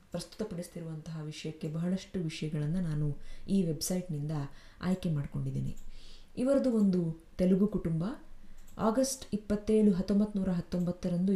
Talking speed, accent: 90 wpm, native